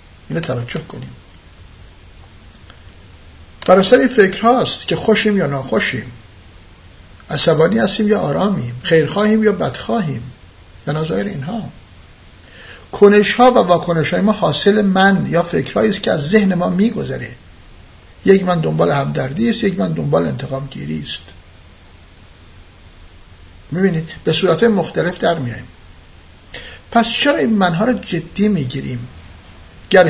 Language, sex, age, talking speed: Persian, male, 60-79, 120 wpm